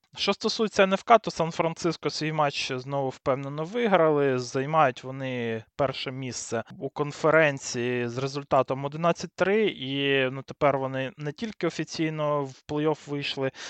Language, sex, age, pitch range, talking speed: Ukrainian, male, 20-39, 130-160 Hz, 130 wpm